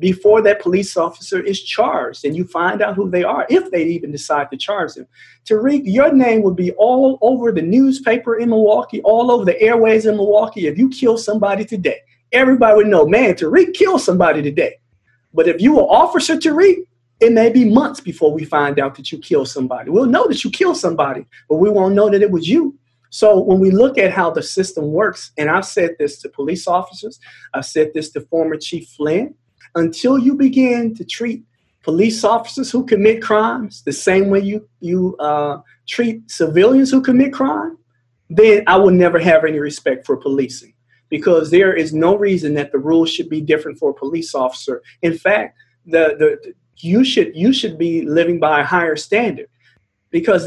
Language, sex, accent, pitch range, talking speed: English, male, American, 150-225 Hz, 195 wpm